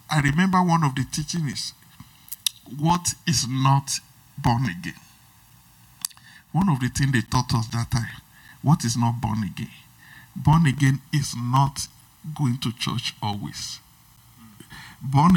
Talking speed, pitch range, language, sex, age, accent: 135 wpm, 125-160 Hz, English, male, 60-79, Nigerian